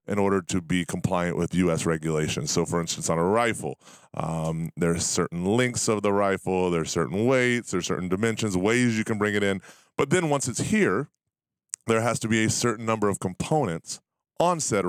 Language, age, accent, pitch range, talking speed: English, 30-49, American, 90-110 Hz, 205 wpm